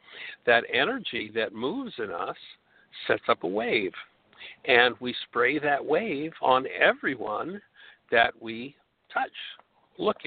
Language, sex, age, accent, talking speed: English, male, 60-79, American, 125 wpm